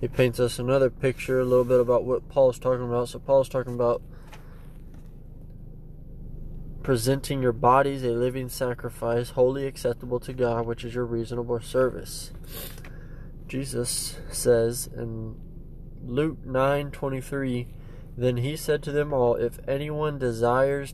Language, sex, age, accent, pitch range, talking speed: English, male, 20-39, American, 120-135 Hz, 140 wpm